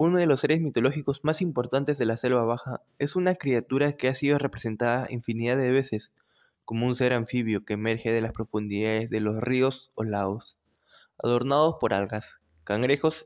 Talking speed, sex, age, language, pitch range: 175 wpm, male, 20-39, Spanish, 110-130 Hz